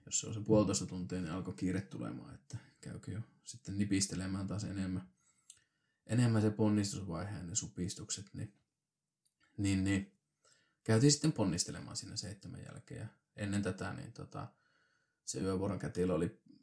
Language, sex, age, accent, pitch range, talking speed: Finnish, male, 20-39, native, 90-110 Hz, 135 wpm